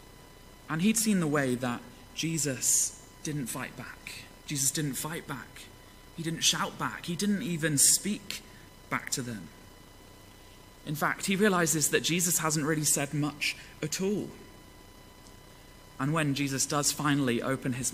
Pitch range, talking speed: 120-170 Hz, 145 wpm